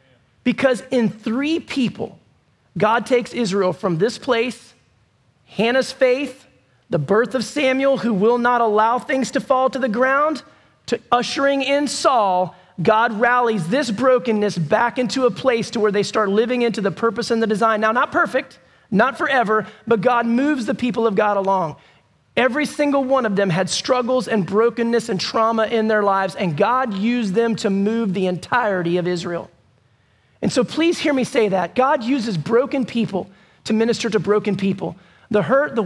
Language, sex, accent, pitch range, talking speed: English, male, American, 210-270 Hz, 175 wpm